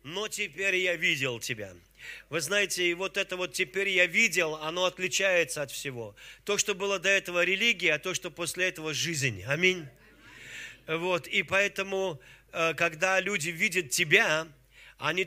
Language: Russian